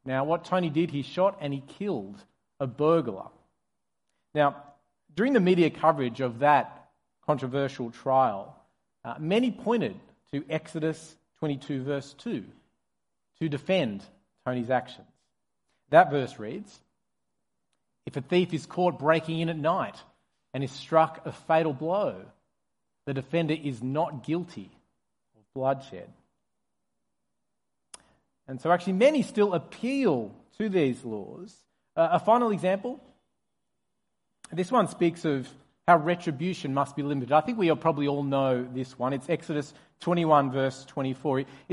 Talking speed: 130 wpm